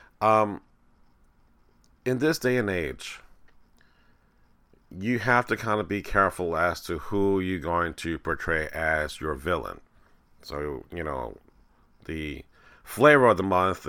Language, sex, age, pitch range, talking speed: English, male, 40-59, 85-105 Hz, 135 wpm